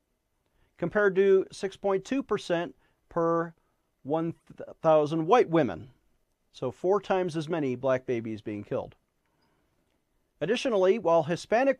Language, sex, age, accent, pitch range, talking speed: English, male, 40-59, American, 140-185 Hz, 95 wpm